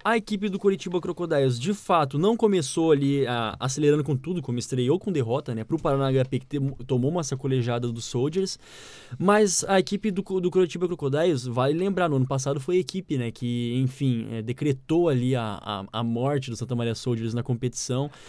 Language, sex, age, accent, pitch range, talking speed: Portuguese, male, 20-39, Brazilian, 125-160 Hz, 195 wpm